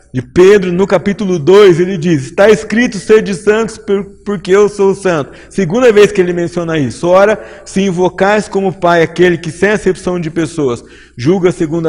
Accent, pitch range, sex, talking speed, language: Brazilian, 155-190 Hz, male, 175 wpm, Portuguese